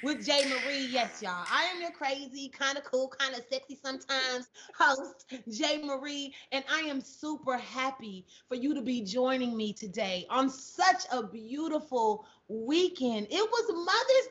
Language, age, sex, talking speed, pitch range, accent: English, 30-49, female, 155 wpm, 255-315 Hz, American